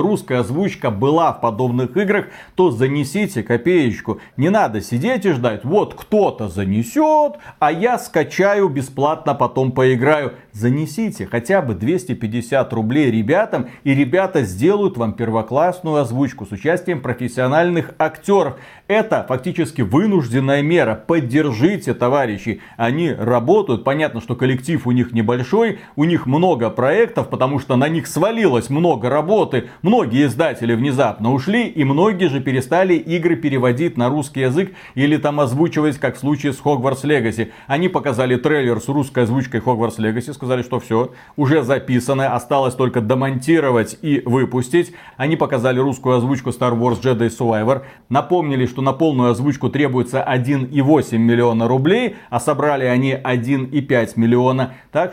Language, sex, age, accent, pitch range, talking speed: Russian, male, 40-59, native, 125-160 Hz, 140 wpm